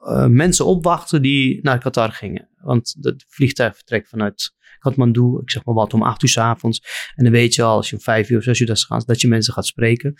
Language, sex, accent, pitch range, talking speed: Dutch, male, Dutch, 115-140 Hz, 230 wpm